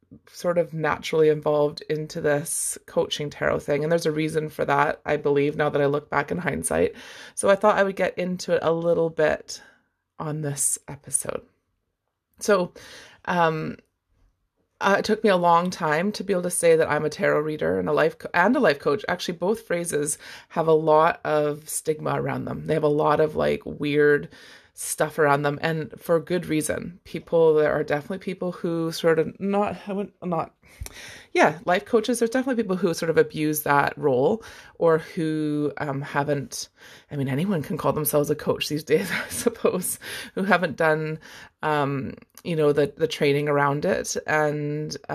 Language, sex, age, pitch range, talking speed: English, female, 20-39, 145-175 Hz, 185 wpm